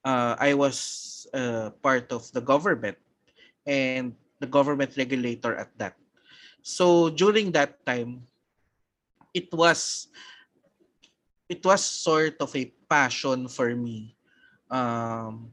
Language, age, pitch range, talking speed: Filipino, 20-39, 120-150 Hz, 110 wpm